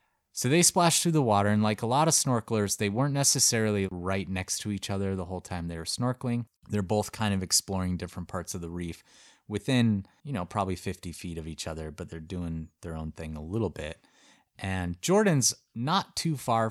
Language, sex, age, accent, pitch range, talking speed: English, male, 30-49, American, 85-110 Hz, 210 wpm